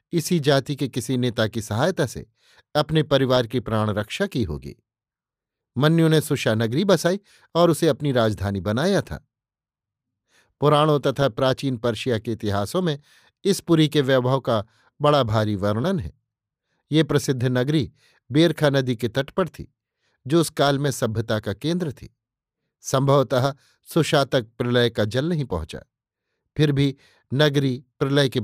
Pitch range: 115-145 Hz